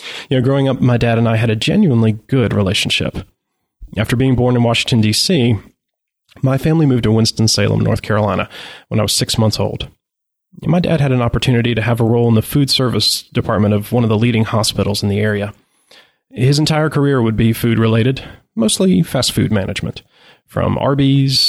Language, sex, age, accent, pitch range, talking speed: English, male, 30-49, American, 110-135 Hz, 190 wpm